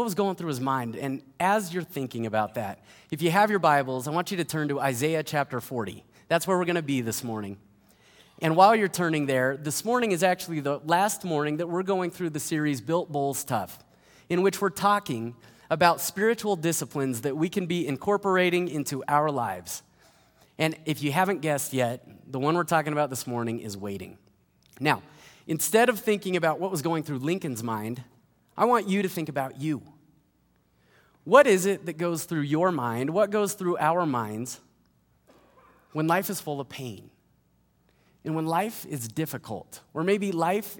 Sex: male